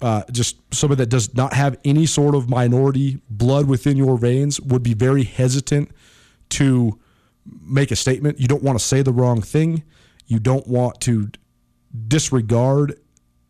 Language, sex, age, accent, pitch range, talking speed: English, male, 30-49, American, 115-145 Hz, 160 wpm